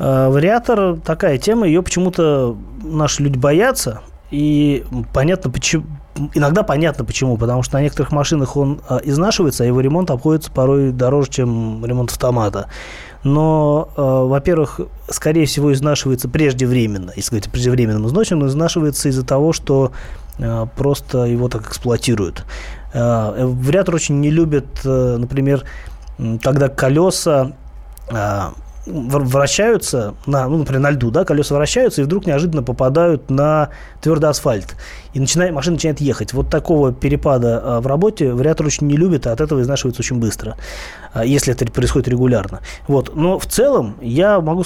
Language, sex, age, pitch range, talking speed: Russian, male, 20-39, 120-155 Hz, 140 wpm